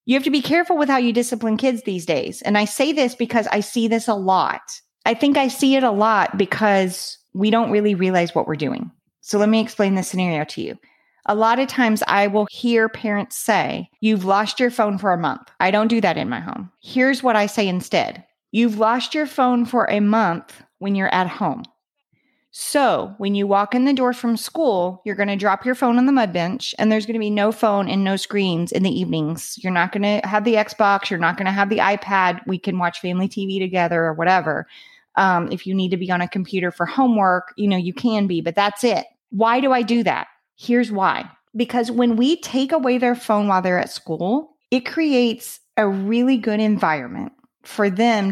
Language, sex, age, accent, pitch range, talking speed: English, female, 30-49, American, 190-245 Hz, 225 wpm